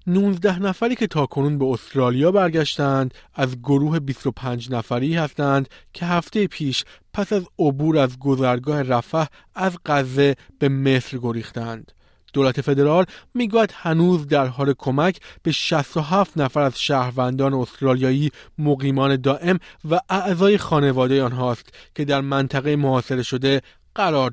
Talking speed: 130 wpm